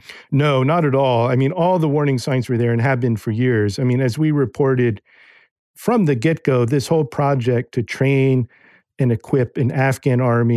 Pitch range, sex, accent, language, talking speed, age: 120-145 Hz, male, American, English, 205 wpm, 50-69